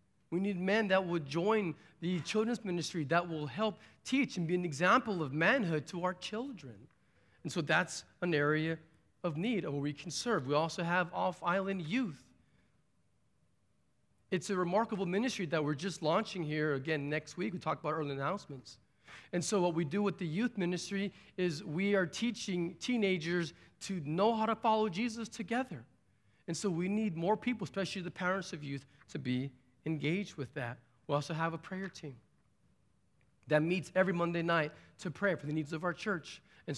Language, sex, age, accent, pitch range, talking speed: English, male, 40-59, American, 150-195 Hz, 185 wpm